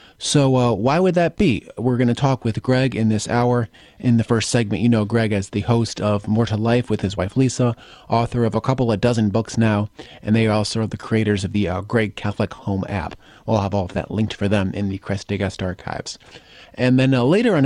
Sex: male